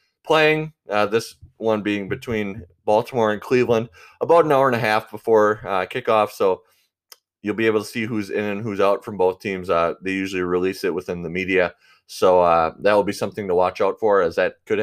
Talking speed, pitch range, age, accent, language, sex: 215 wpm, 95-135 Hz, 20-39, American, English, male